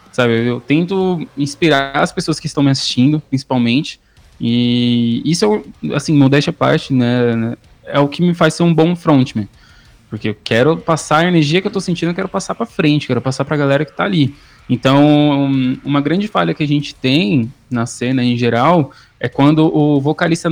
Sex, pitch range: male, 125-160 Hz